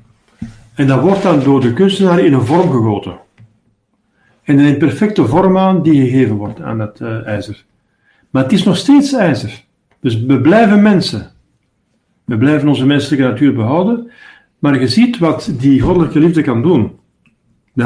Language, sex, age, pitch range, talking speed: Dutch, male, 50-69, 125-185 Hz, 170 wpm